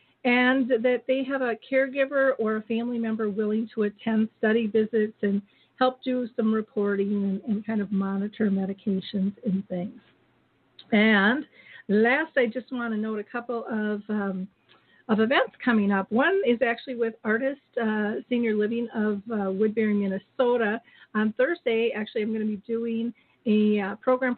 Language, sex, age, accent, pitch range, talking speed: English, female, 50-69, American, 205-235 Hz, 160 wpm